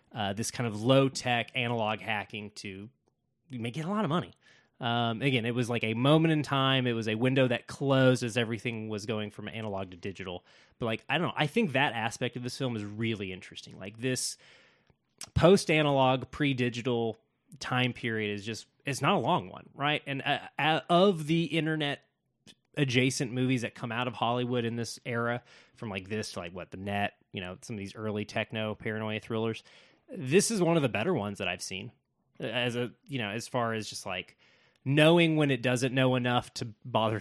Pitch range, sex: 110-130 Hz, male